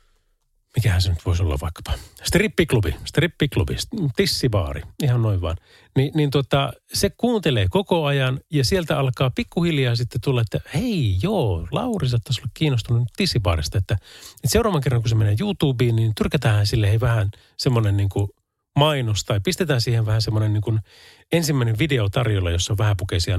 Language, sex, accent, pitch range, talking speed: Finnish, male, native, 105-150 Hz, 155 wpm